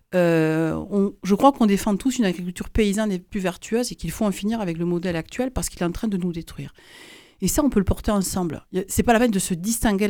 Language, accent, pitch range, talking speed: French, French, 180-235 Hz, 270 wpm